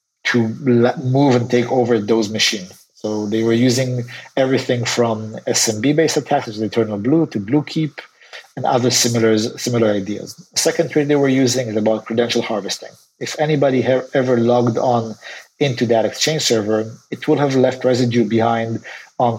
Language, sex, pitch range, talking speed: English, male, 115-130 Hz, 165 wpm